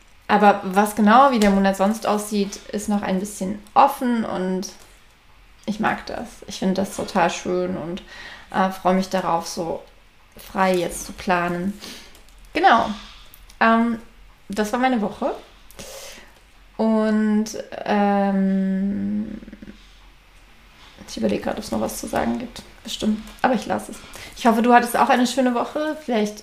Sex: female